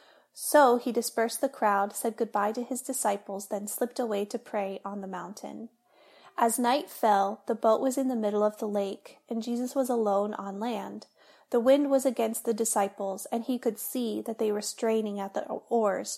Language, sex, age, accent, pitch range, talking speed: English, female, 30-49, American, 210-245 Hz, 195 wpm